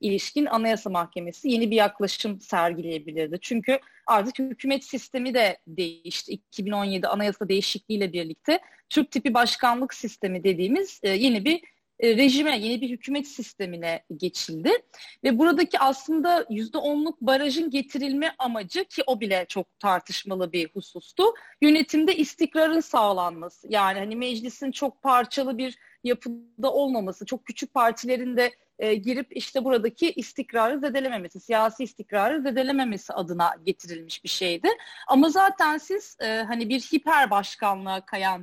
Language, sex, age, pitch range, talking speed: Turkish, female, 30-49, 200-280 Hz, 125 wpm